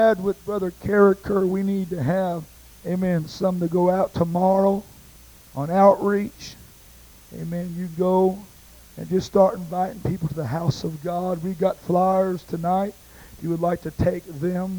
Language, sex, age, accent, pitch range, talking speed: English, male, 50-69, American, 175-195 Hz, 160 wpm